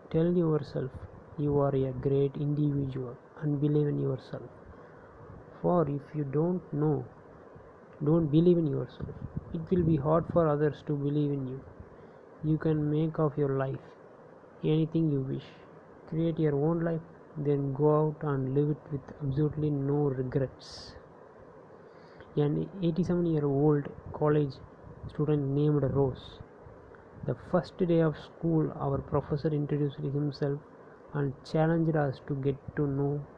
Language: English